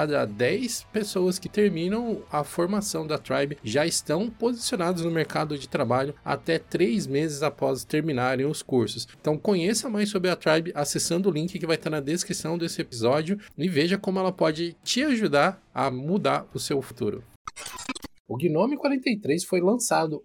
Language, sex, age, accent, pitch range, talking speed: Portuguese, male, 20-39, Brazilian, 150-205 Hz, 165 wpm